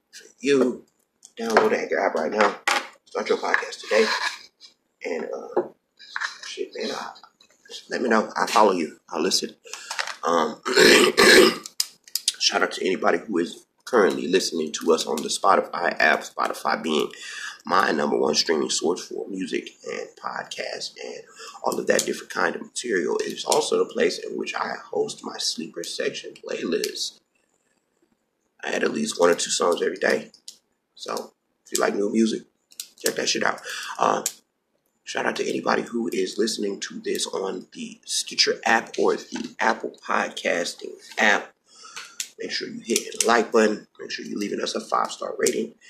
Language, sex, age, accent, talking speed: English, male, 30-49, American, 165 wpm